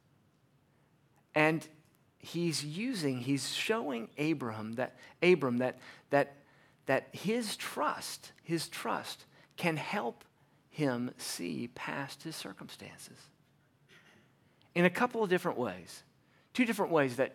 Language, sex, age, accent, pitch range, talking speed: English, male, 40-59, American, 135-165 Hz, 110 wpm